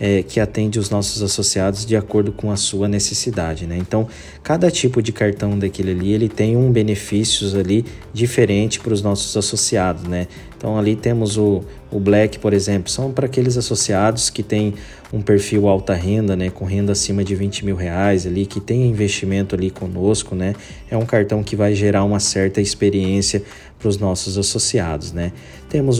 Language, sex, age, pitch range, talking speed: Portuguese, male, 20-39, 100-110 Hz, 180 wpm